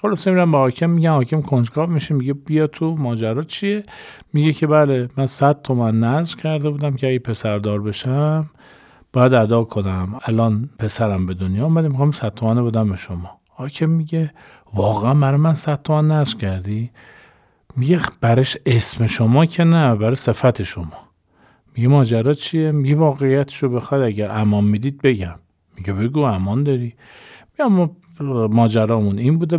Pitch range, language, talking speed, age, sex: 110-145 Hz, Persian, 150 wpm, 50-69, male